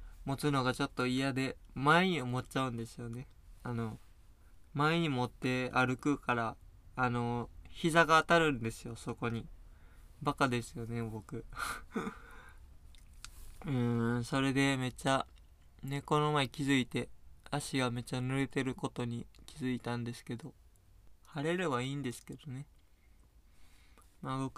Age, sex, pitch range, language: 20-39, male, 115-140 Hz, Japanese